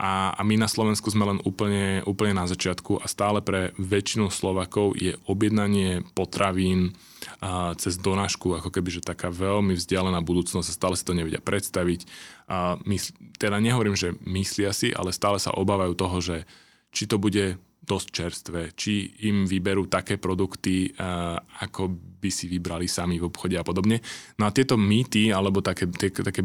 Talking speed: 170 wpm